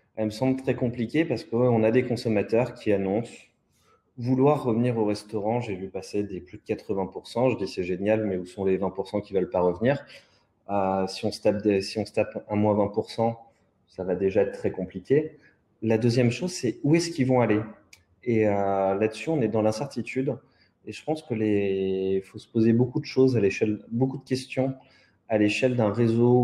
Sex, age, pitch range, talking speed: male, 20-39, 100-120 Hz, 210 wpm